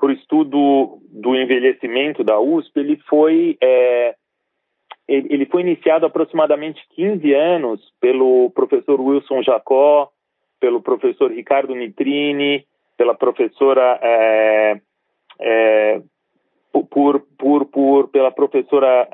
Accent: Brazilian